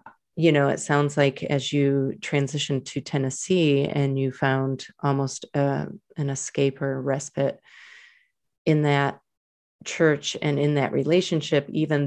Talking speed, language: 130 wpm, English